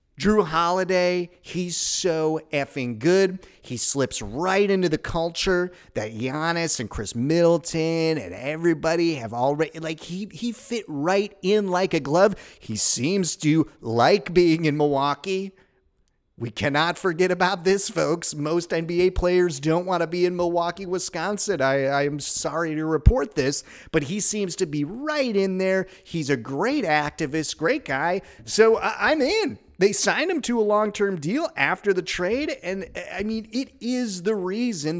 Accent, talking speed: American, 160 wpm